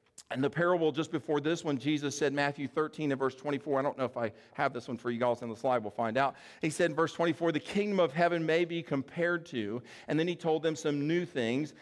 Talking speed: 265 wpm